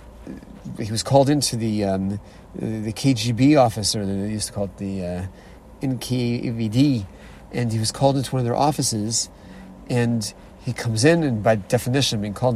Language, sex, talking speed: English, male, 165 wpm